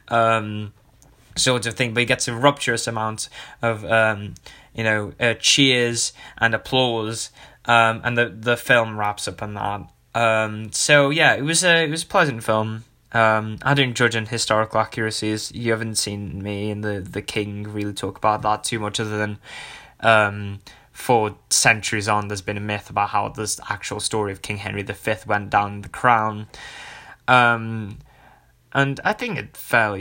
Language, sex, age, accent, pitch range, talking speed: English, male, 10-29, British, 105-115 Hz, 180 wpm